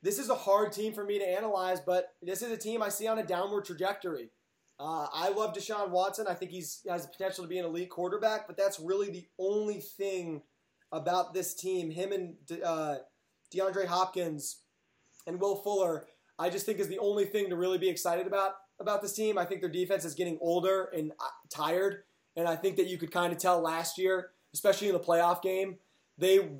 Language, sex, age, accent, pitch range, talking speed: English, male, 20-39, American, 170-195 Hz, 215 wpm